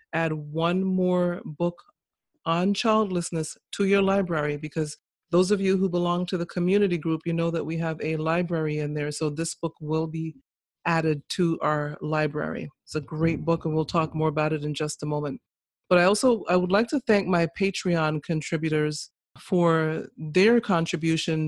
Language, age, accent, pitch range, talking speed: English, 40-59, American, 160-185 Hz, 180 wpm